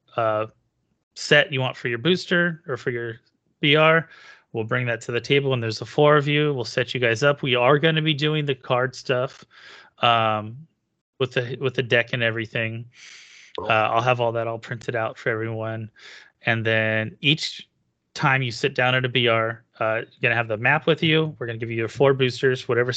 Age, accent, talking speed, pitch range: 30-49, American, 215 wpm, 115-140 Hz